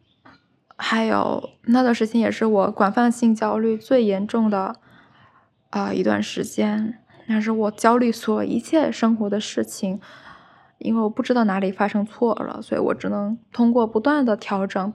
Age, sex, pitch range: 10-29, female, 200-235 Hz